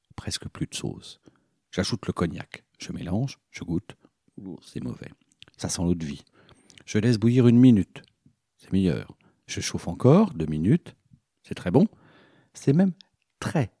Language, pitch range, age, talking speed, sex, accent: French, 85-125 Hz, 50-69, 155 wpm, male, French